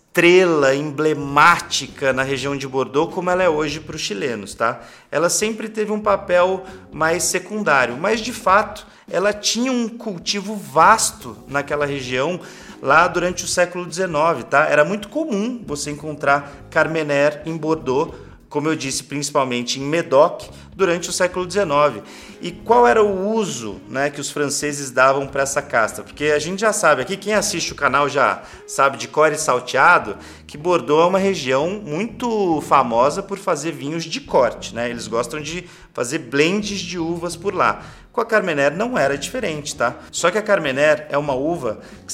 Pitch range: 145-195 Hz